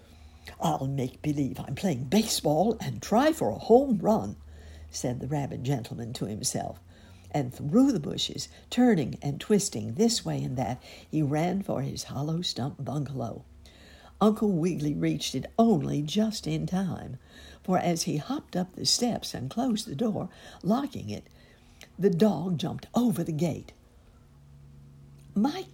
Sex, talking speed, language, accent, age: female, 150 wpm, English, American, 60-79